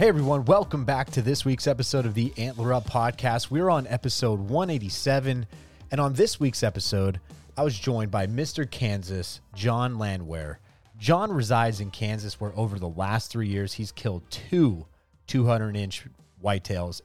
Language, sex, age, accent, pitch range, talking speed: English, male, 30-49, American, 95-120 Hz, 160 wpm